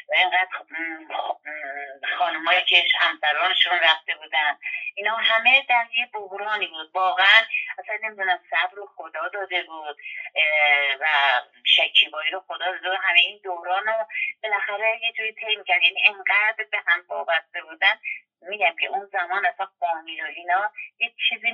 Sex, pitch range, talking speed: female, 170-245 Hz, 135 wpm